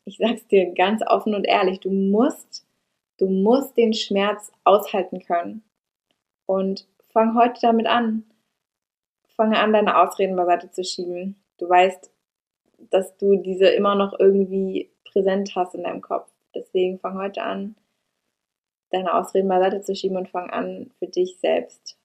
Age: 20-39